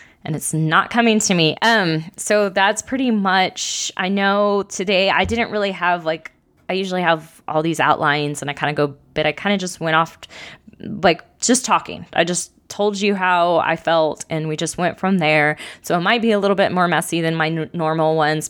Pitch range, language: 160-205 Hz, English